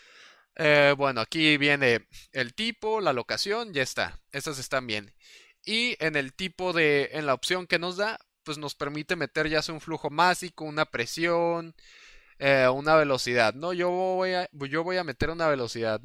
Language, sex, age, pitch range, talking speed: Spanish, male, 20-39, 140-175 Hz, 180 wpm